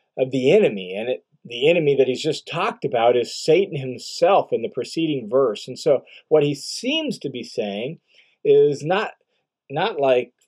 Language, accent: English, American